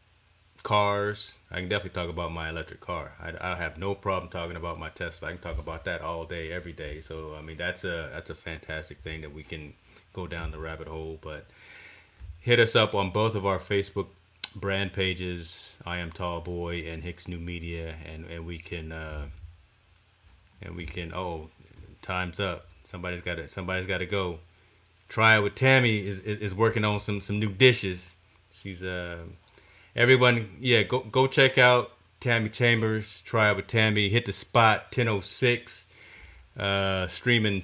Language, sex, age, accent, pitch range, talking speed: English, male, 30-49, American, 85-105 Hz, 180 wpm